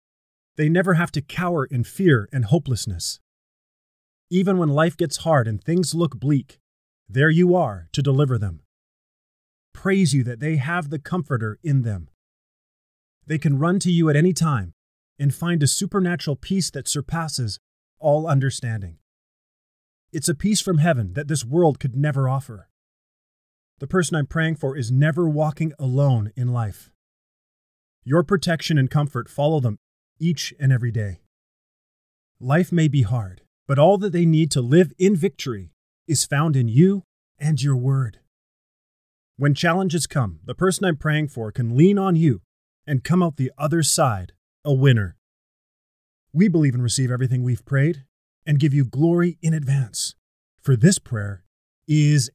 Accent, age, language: American, 30-49, English